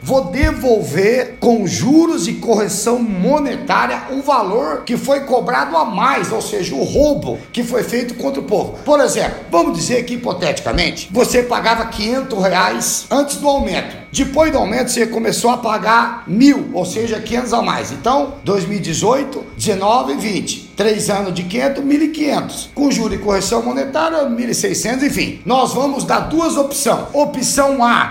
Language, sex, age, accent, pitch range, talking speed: Portuguese, male, 60-79, Brazilian, 210-275 Hz, 160 wpm